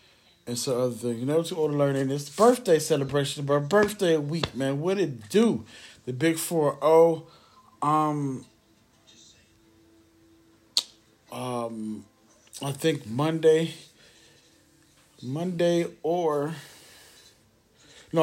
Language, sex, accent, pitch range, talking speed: English, male, American, 115-150 Hz, 100 wpm